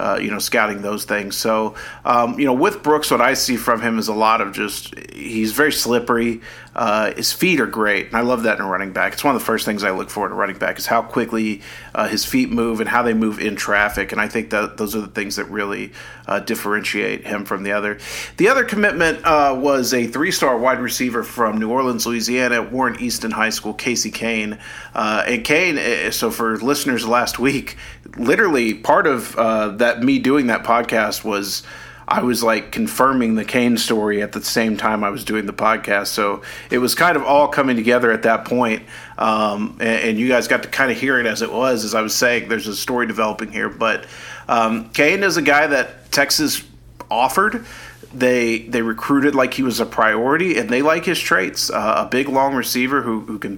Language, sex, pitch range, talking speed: English, male, 110-125 Hz, 220 wpm